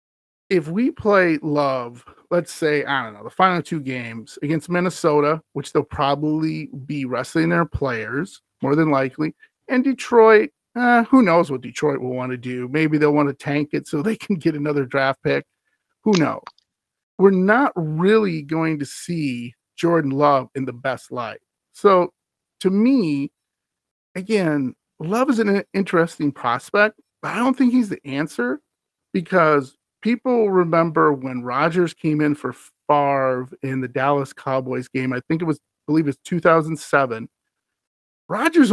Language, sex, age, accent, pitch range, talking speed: English, male, 40-59, American, 135-175 Hz, 160 wpm